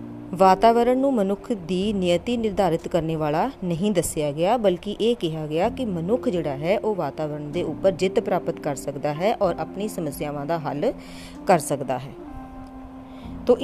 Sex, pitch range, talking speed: female, 145-215 Hz, 165 wpm